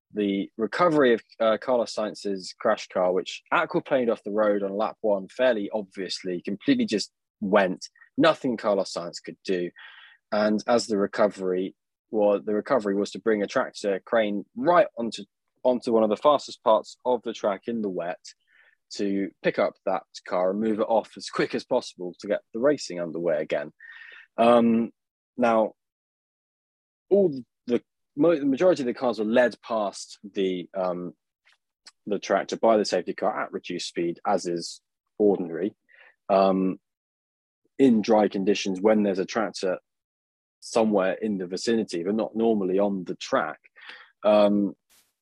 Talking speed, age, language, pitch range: 155 wpm, 20-39, English, 95-115 Hz